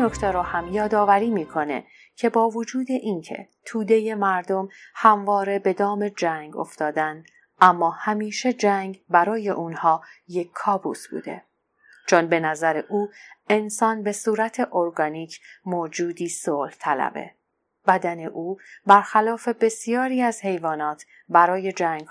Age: 30-49